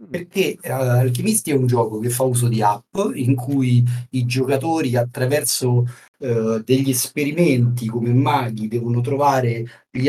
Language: Italian